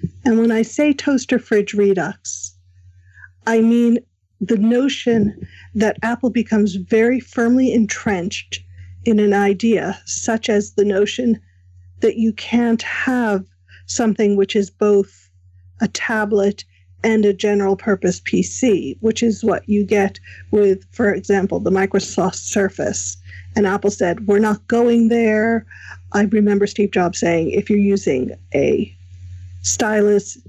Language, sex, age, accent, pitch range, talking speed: English, female, 50-69, American, 190-230 Hz, 130 wpm